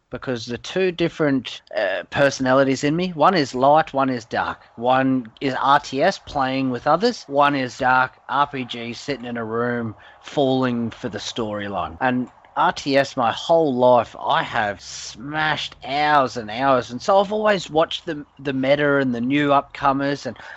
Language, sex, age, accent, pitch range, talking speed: English, male, 30-49, Australian, 120-145 Hz, 165 wpm